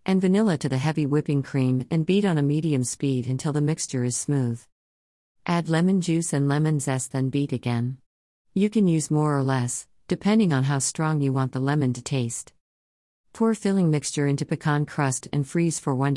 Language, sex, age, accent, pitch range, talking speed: English, female, 50-69, American, 125-160 Hz, 195 wpm